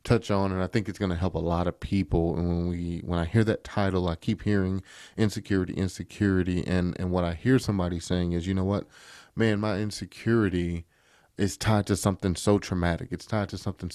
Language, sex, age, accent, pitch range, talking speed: English, male, 30-49, American, 90-105 Hz, 210 wpm